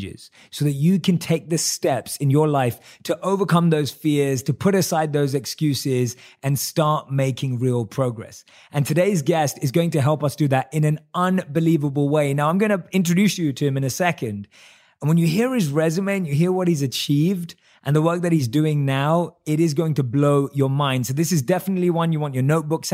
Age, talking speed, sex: 20-39, 215 wpm, male